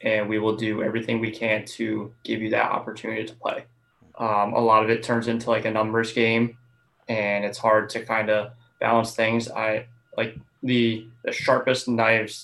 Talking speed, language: 190 wpm, English